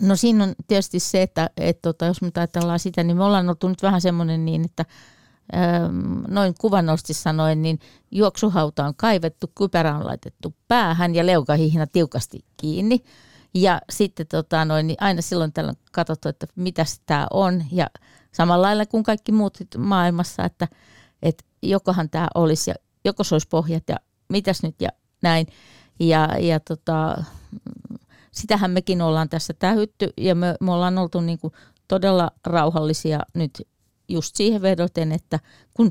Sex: female